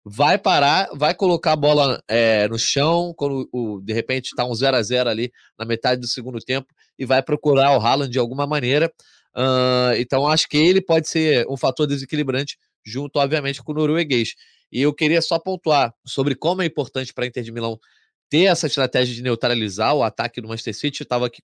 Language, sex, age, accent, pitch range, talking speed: Portuguese, male, 20-39, Brazilian, 125-160 Hz, 195 wpm